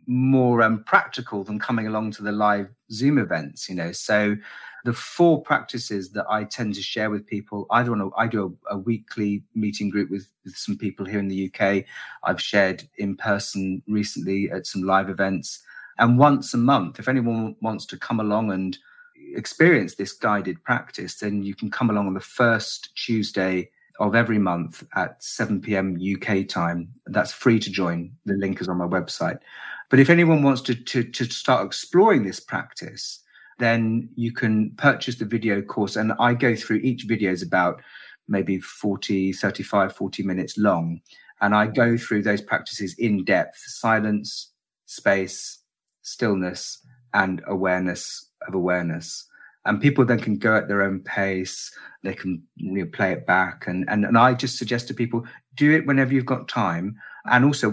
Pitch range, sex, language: 95-120 Hz, male, English